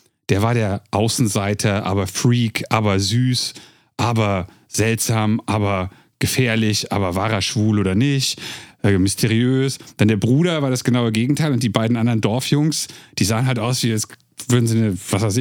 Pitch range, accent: 105-135 Hz, German